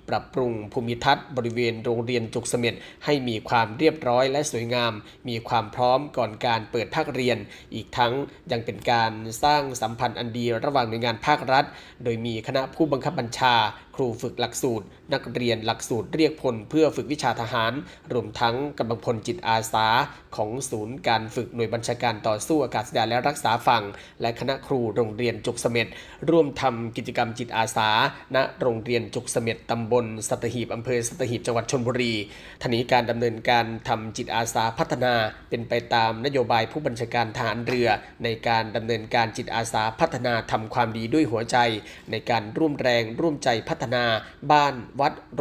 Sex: male